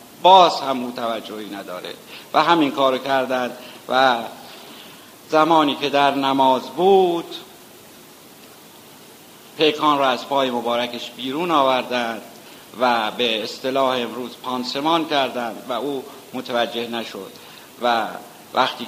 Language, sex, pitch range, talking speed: Persian, male, 120-140 Hz, 105 wpm